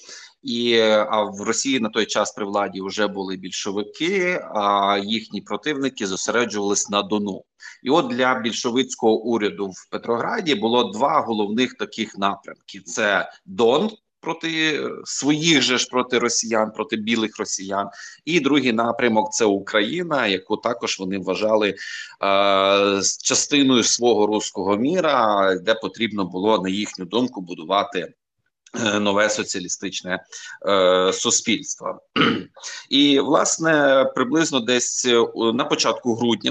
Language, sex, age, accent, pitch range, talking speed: Ukrainian, male, 30-49, native, 100-125 Hz, 120 wpm